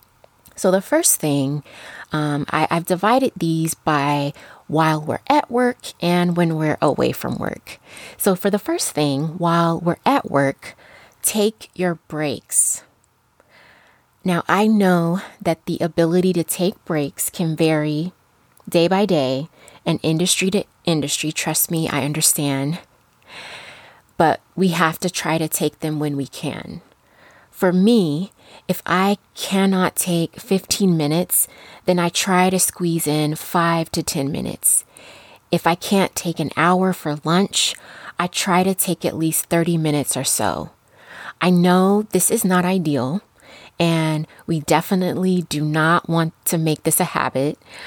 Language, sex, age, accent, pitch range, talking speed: English, female, 20-39, American, 155-185 Hz, 145 wpm